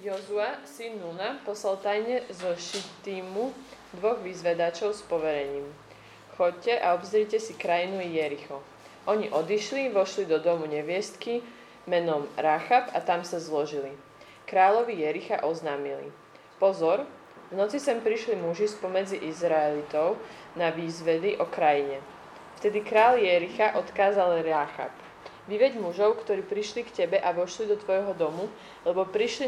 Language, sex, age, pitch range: Slovak, female, 20-39, 160-215 Hz